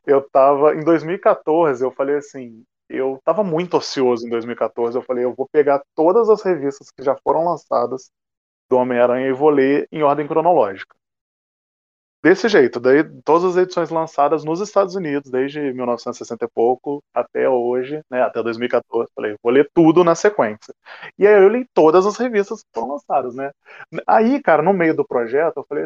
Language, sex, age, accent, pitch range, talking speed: Portuguese, male, 20-39, Brazilian, 125-165 Hz, 180 wpm